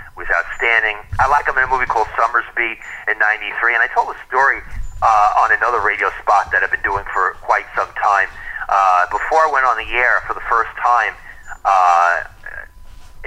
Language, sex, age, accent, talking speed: English, male, 40-59, American, 195 wpm